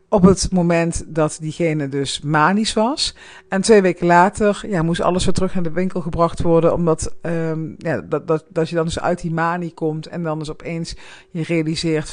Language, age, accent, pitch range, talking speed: Dutch, 50-69, Dutch, 155-185 Hz, 205 wpm